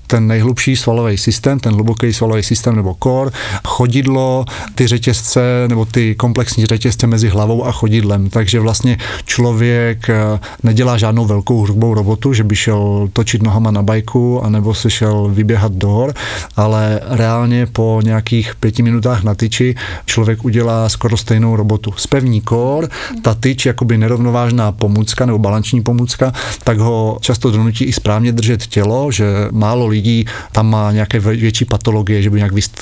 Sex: male